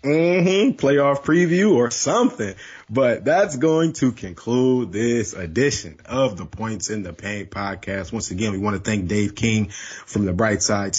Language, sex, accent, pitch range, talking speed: English, male, American, 110-150 Hz, 170 wpm